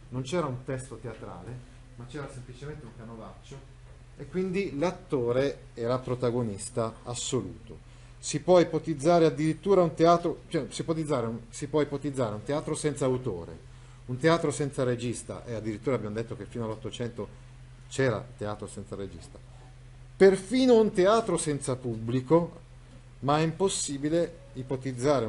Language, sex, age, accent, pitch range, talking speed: Italian, male, 40-59, native, 120-150 Hz, 115 wpm